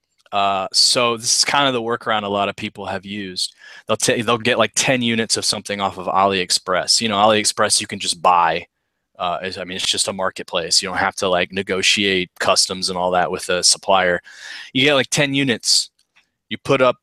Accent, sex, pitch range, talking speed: American, male, 100-125 Hz, 215 wpm